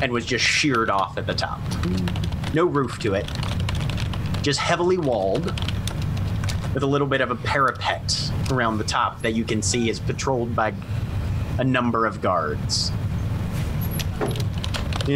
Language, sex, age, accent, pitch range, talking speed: English, male, 30-49, American, 100-125 Hz, 145 wpm